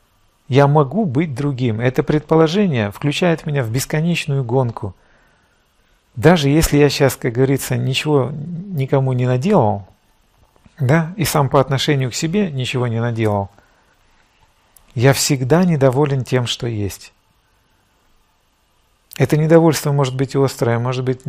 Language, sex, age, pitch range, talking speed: Russian, male, 50-69, 115-150 Hz, 125 wpm